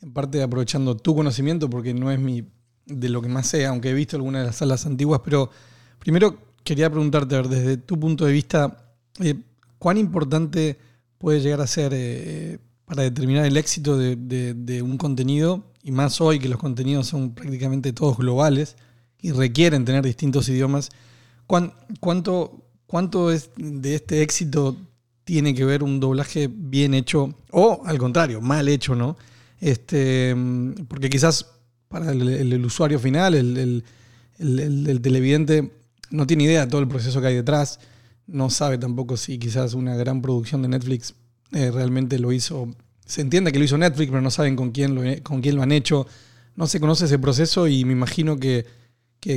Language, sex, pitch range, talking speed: Spanish, male, 125-150 Hz, 180 wpm